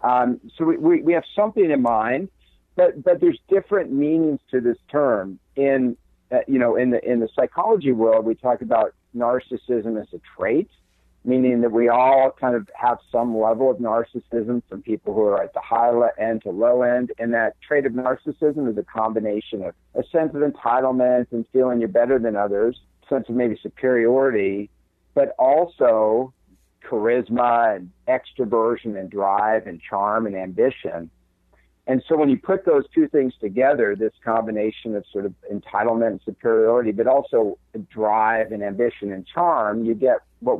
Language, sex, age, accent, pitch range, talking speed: English, male, 50-69, American, 110-135 Hz, 175 wpm